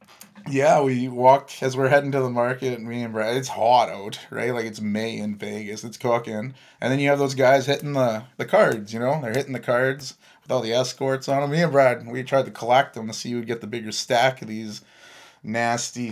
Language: English